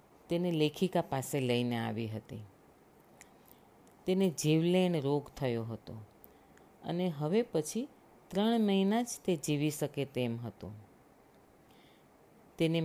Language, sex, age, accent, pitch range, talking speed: Gujarati, female, 40-59, native, 130-185 Hz, 105 wpm